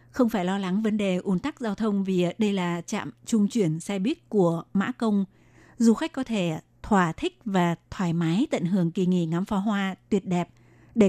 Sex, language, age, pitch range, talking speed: female, Vietnamese, 20-39, 185-220 Hz, 215 wpm